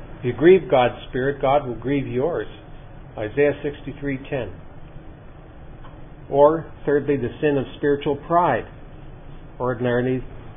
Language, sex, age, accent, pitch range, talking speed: English, male, 50-69, American, 120-145 Hz, 110 wpm